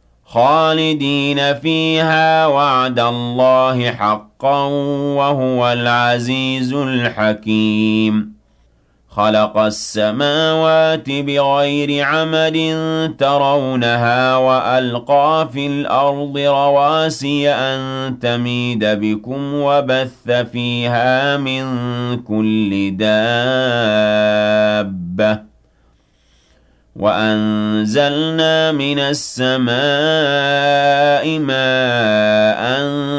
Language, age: Arabic, 40-59